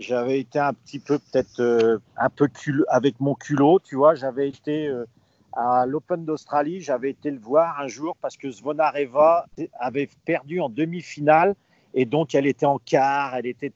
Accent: French